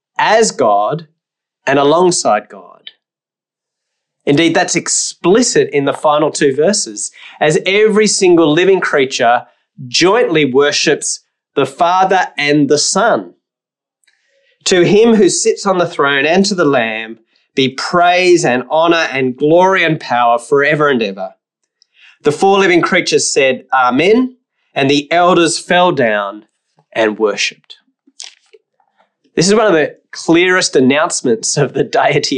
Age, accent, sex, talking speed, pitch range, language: 30-49, Australian, male, 130 wpm, 145-200 Hz, English